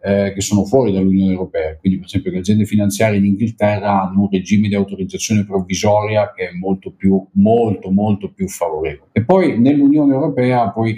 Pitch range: 95-115 Hz